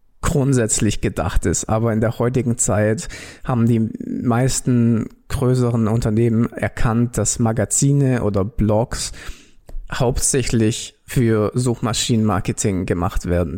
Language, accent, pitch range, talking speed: German, German, 110-130 Hz, 100 wpm